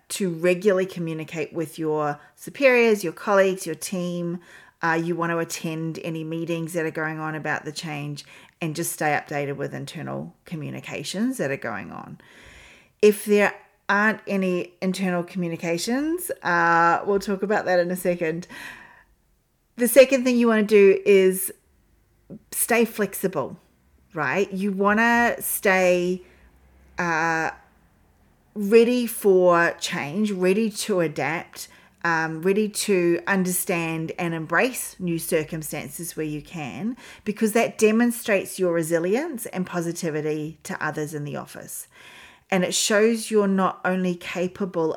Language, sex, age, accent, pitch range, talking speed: English, female, 40-59, Australian, 160-200 Hz, 135 wpm